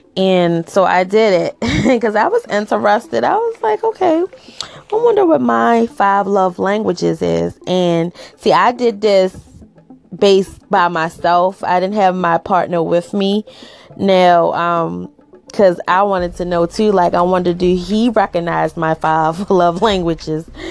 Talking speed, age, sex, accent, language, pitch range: 160 wpm, 20-39, female, American, English, 180-220 Hz